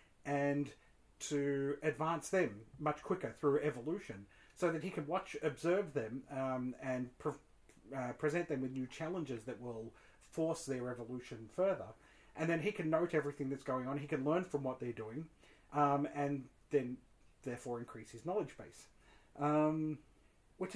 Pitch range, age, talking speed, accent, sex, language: 120-150 Hz, 30-49, 160 wpm, Australian, male, English